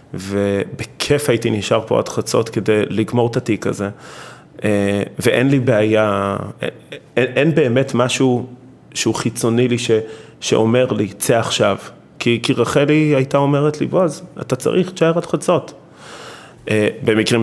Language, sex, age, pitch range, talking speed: Hebrew, male, 30-49, 105-130 Hz, 135 wpm